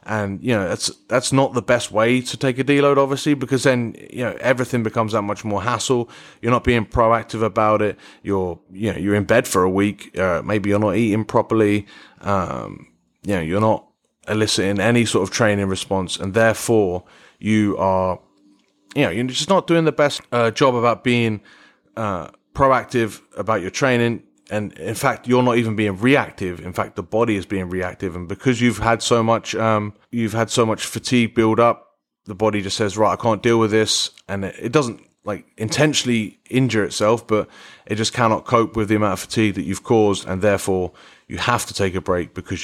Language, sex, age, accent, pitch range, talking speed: English, male, 30-49, British, 100-120 Hz, 205 wpm